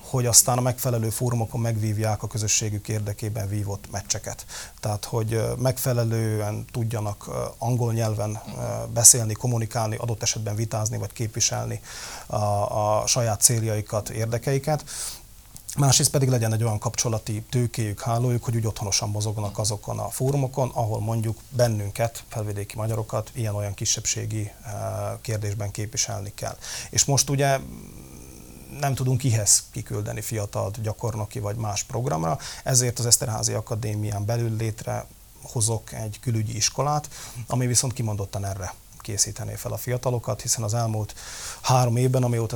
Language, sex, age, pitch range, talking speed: Hungarian, male, 30-49, 105-120 Hz, 125 wpm